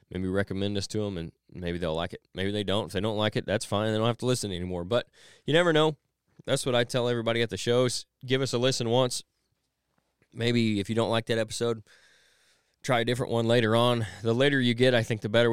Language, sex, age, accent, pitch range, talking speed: English, male, 20-39, American, 95-120 Hz, 245 wpm